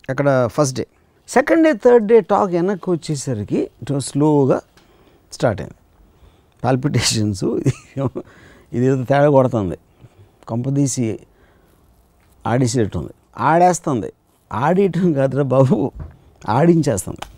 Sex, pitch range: male, 115-160 Hz